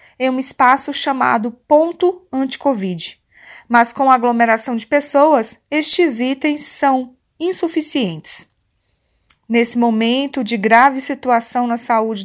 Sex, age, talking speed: female, 20-39, 115 wpm